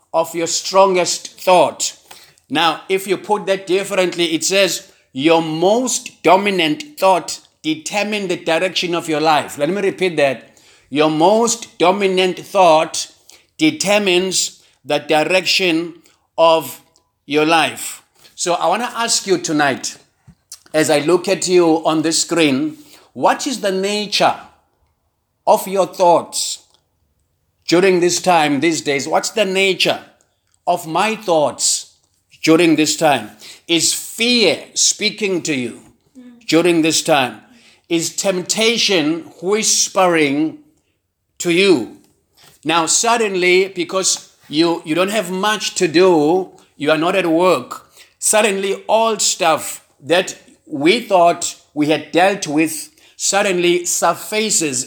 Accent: South African